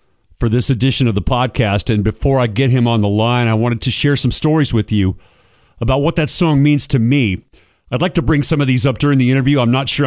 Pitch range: 110-135 Hz